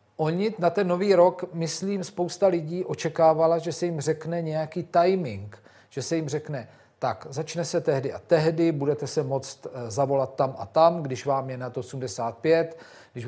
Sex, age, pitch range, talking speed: male, 40-59, 140-170 Hz, 175 wpm